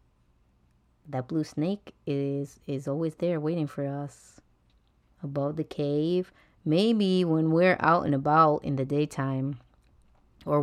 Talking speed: 130 wpm